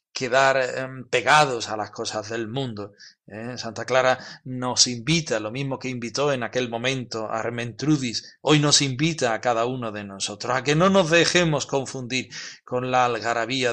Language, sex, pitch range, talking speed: Spanish, male, 115-150 Hz, 160 wpm